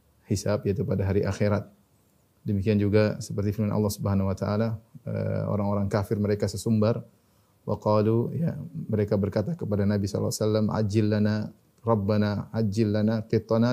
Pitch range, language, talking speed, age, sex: 105-115 Hz, Indonesian, 130 wpm, 30-49, male